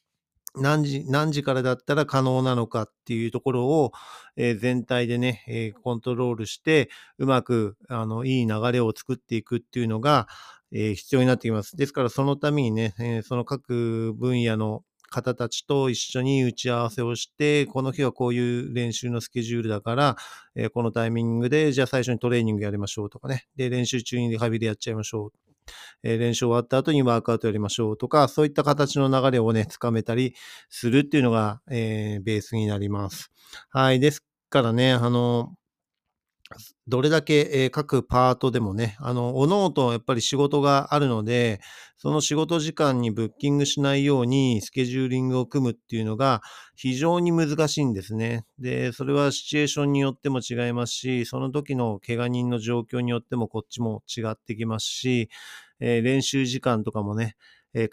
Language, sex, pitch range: Japanese, male, 115-135 Hz